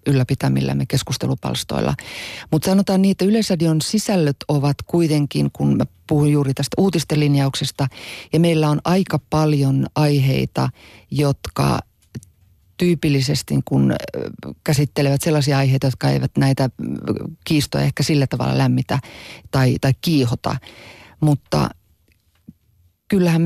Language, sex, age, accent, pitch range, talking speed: Finnish, female, 30-49, native, 130-150 Hz, 105 wpm